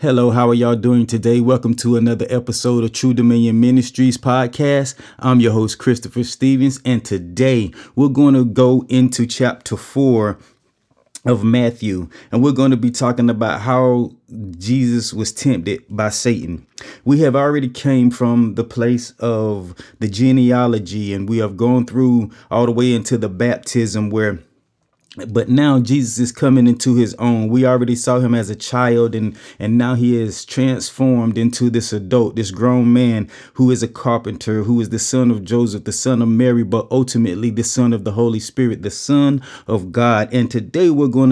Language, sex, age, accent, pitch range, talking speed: English, male, 30-49, American, 115-130 Hz, 180 wpm